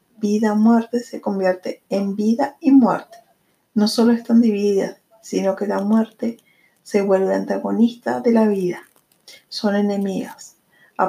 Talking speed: 130 wpm